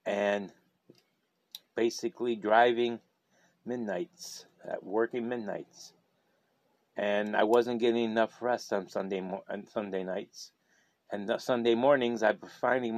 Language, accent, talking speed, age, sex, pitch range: English, American, 115 wpm, 30-49, male, 110-135 Hz